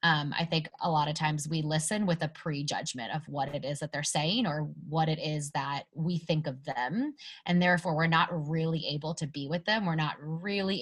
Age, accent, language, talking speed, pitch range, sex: 20-39, American, English, 230 wpm, 150-175 Hz, female